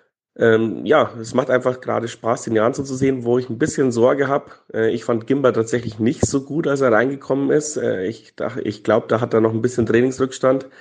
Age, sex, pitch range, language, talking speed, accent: 30-49, male, 105-125 Hz, German, 215 wpm, German